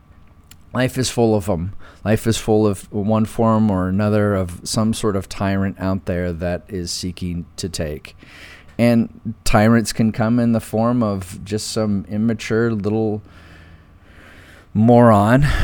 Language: English